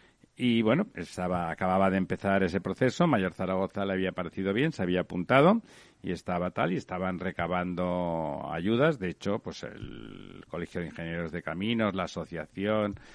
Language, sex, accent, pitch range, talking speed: Spanish, male, Spanish, 85-100 Hz, 160 wpm